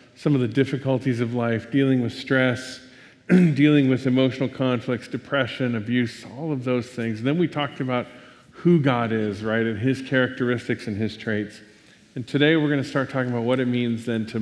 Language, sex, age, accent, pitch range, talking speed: English, male, 40-59, American, 110-145 Hz, 190 wpm